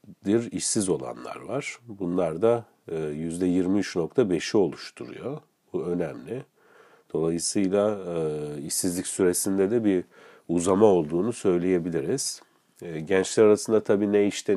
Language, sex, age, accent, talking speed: Turkish, male, 40-59, native, 90 wpm